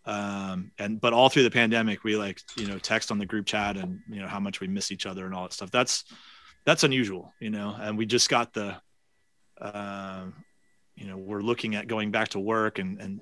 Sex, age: male, 30-49